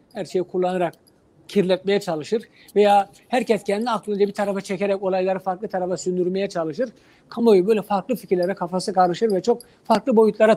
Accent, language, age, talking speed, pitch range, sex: native, Turkish, 60-79, 155 wpm, 180-205 Hz, male